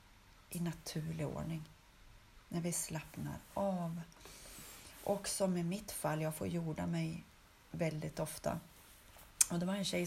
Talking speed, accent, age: 135 wpm, native, 30-49